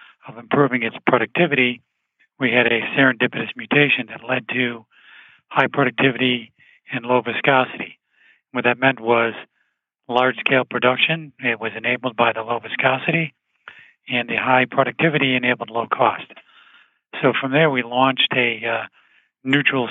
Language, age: English, 40-59